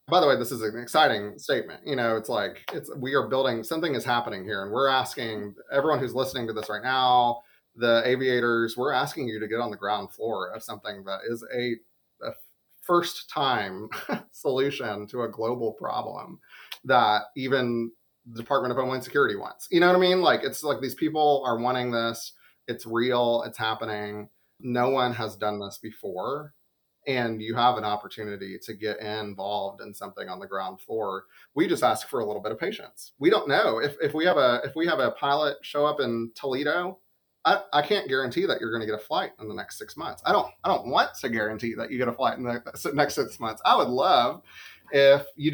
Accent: American